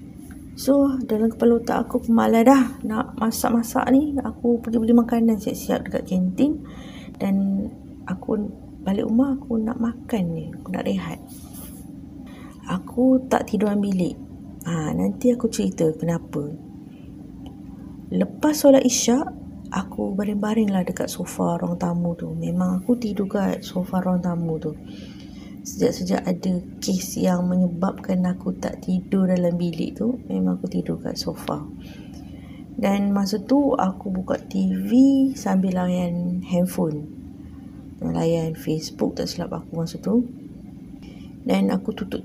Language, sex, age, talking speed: Malay, female, 30-49, 130 wpm